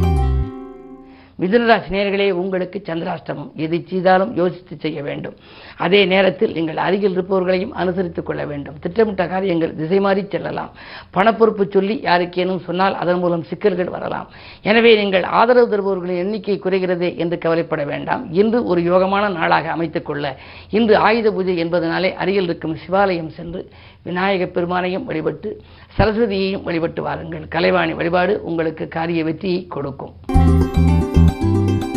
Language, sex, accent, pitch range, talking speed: Tamil, female, native, 165-195 Hz, 120 wpm